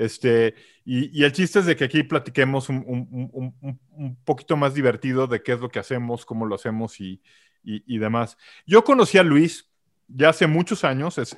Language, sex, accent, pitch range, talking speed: Spanish, male, Mexican, 120-150 Hz, 200 wpm